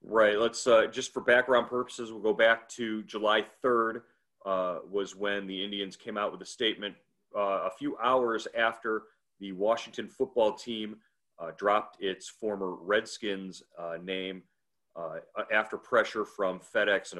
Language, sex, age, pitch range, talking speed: English, male, 40-59, 90-110 Hz, 155 wpm